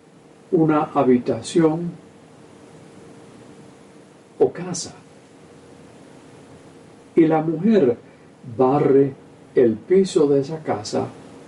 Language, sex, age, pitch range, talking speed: Spanish, male, 50-69, 125-160 Hz, 70 wpm